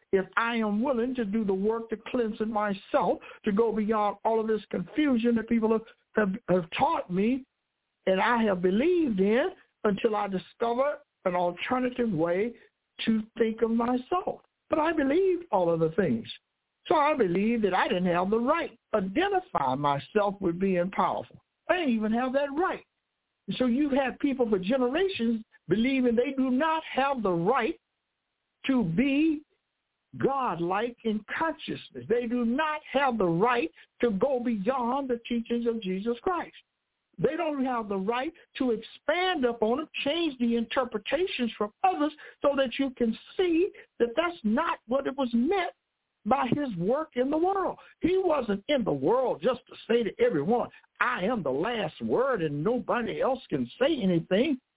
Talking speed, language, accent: 170 wpm, English, American